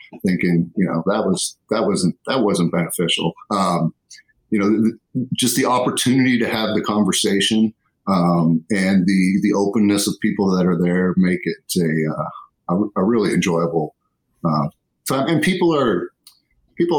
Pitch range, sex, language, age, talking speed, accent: 90-110 Hz, male, English, 50-69, 160 wpm, American